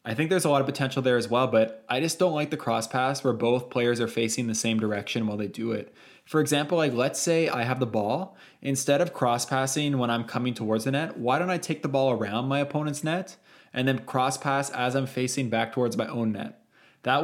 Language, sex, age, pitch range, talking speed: English, male, 20-39, 115-140 Hz, 250 wpm